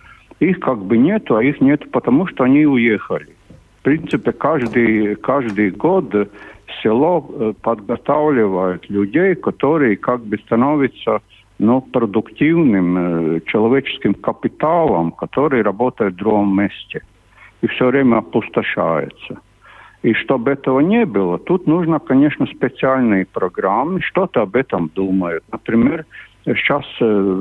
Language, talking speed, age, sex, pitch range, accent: Russian, 115 wpm, 60-79, male, 100-130 Hz, native